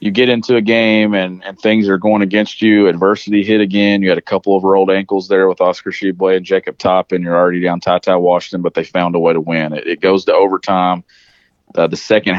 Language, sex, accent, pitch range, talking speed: English, male, American, 90-105 Hz, 240 wpm